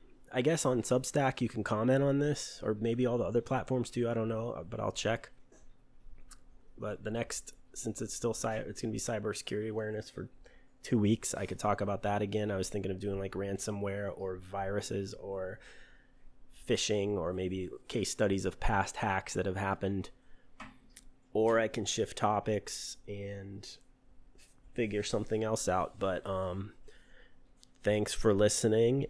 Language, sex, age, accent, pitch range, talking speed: English, male, 30-49, American, 95-115 Hz, 165 wpm